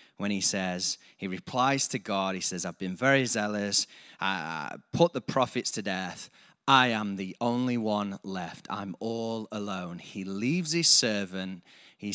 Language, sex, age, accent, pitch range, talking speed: English, male, 30-49, British, 105-140 Hz, 170 wpm